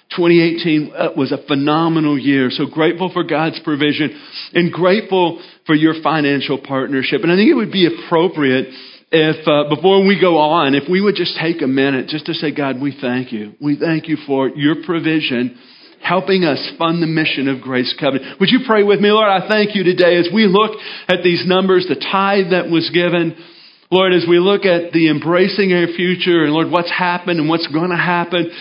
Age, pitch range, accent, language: 40-59, 150-180 Hz, American, English